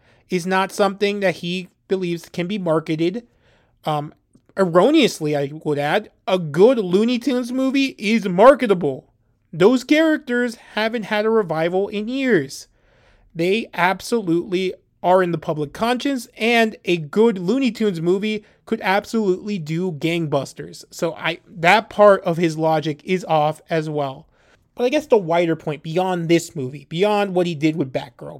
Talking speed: 150 wpm